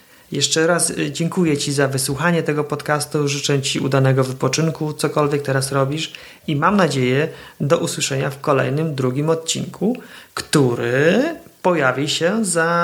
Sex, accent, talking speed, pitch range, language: male, native, 130 wpm, 135-160 Hz, Polish